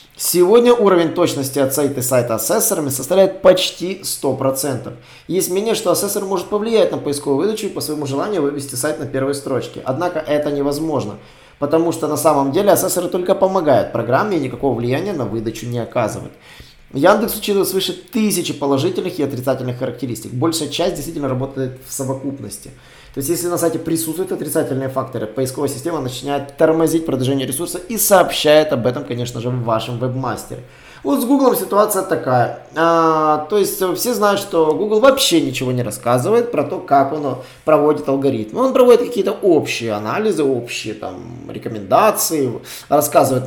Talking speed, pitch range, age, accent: 155 wpm, 130-180 Hz, 20-39, native